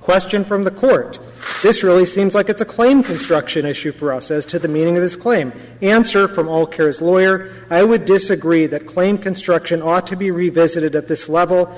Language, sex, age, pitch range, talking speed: English, male, 40-59, 150-175 Hz, 205 wpm